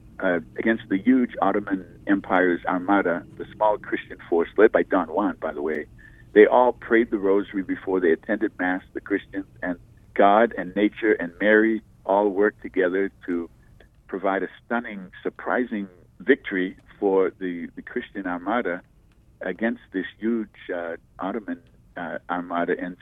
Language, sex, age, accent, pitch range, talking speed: English, male, 50-69, American, 90-115 Hz, 150 wpm